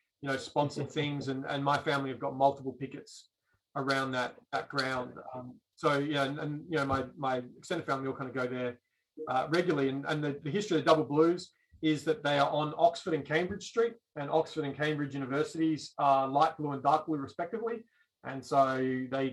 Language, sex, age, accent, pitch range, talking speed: English, male, 30-49, Australian, 135-155 Hz, 210 wpm